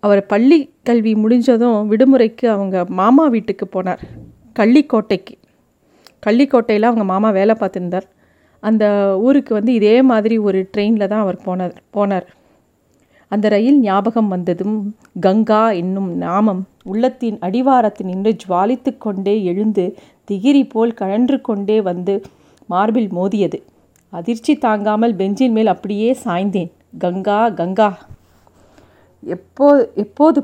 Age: 40-59